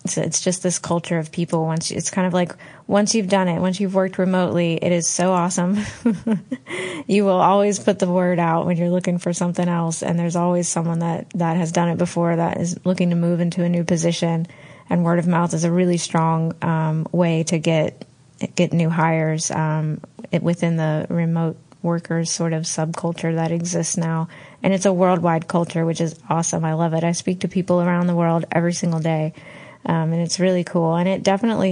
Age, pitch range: 20-39, 165-180 Hz